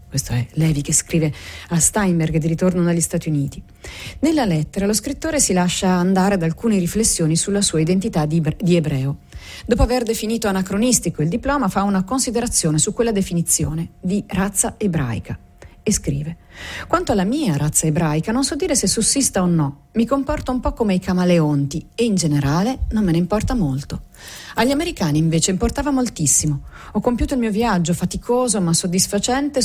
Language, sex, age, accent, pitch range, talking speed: Italian, female, 40-59, native, 160-220 Hz, 170 wpm